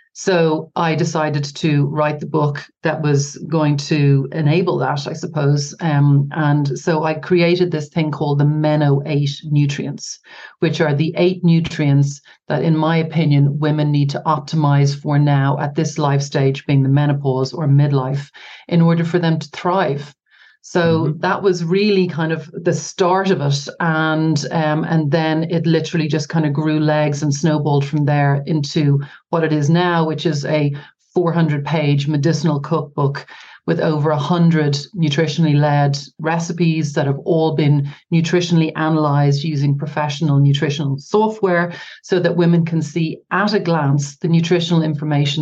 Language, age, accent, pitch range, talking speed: English, 40-59, Irish, 145-165 Hz, 160 wpm